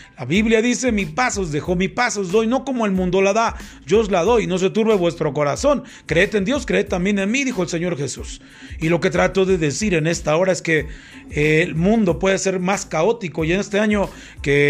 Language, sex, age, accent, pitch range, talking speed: Spanish, male, 40-59, Mexican, 160-210 Hz, 240 wpm